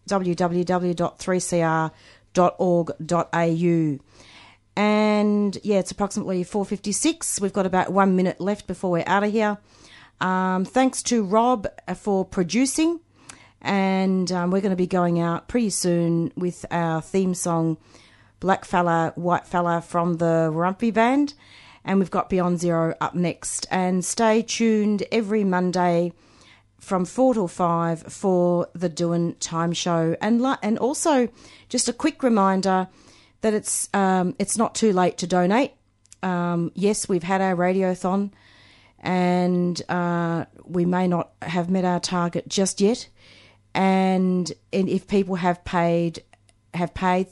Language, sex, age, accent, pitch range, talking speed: English, female, 40-59, Australian, 170-200 Hz, 135 wpm